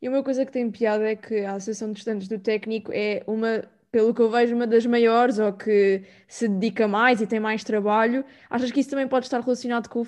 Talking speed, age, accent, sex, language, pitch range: 245 wpm, 20-39, Brazilian, female, Portuguese, 220-250 Hz